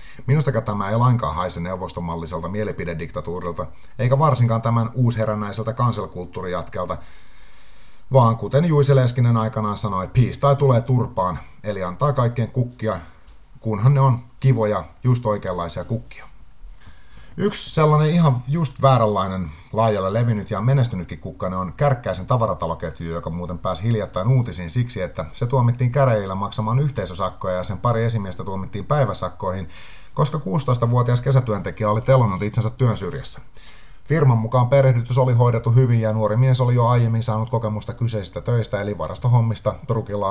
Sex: male